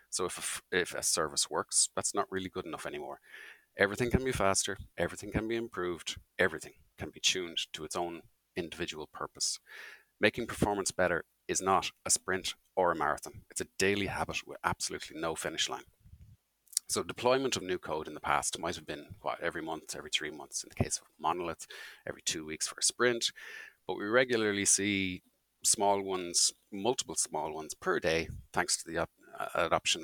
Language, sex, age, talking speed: English, male, 30-49, 185 wpm